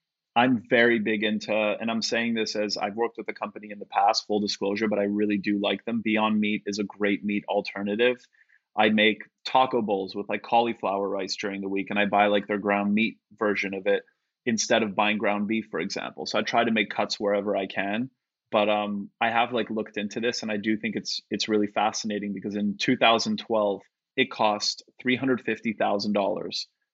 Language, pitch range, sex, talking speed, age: English, 100-115 Hz, male, 205 wpm, 30-49